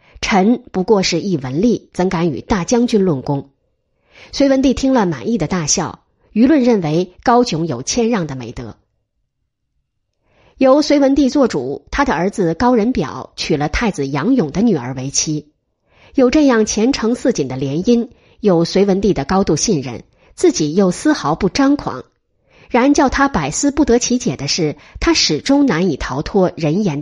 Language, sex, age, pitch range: Chinese, female, 30-49, 155-245 Hz